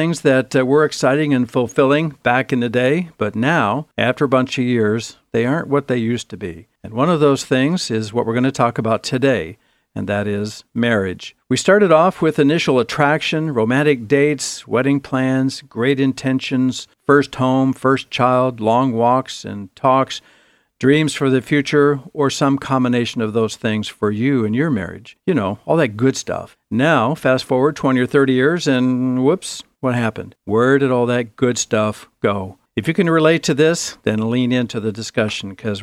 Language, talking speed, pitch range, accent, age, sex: English, 190 wpm, 115-145 Hz, American, 60-79, male